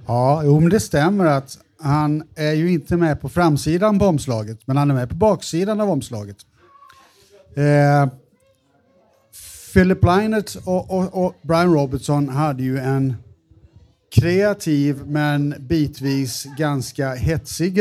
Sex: male